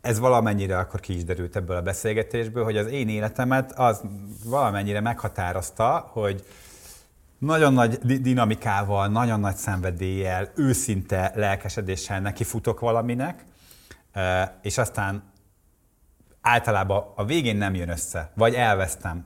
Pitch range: 90-115 Hz